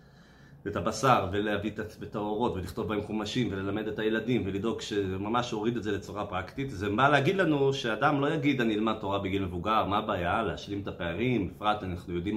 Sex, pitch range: male, 100-120 Hz